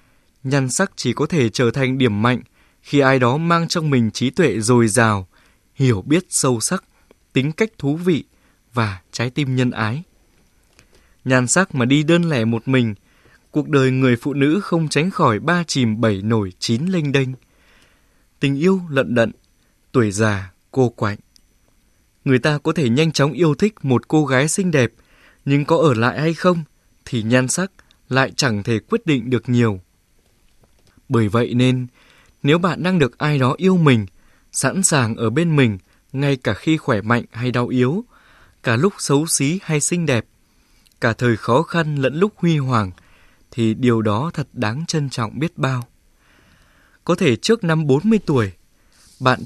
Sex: male